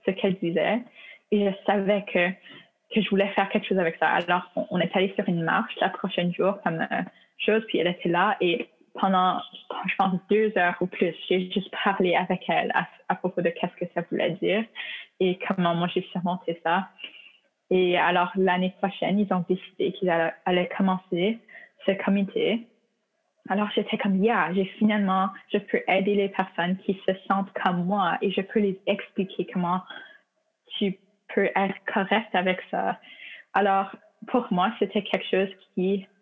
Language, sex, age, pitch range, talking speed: French, female, 20-39, 180-210 Hz, 175 wpm